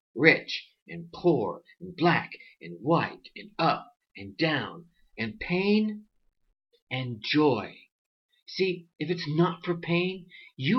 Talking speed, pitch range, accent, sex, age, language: 120 wpm, 145-195 Hz, American, male, 50-69, English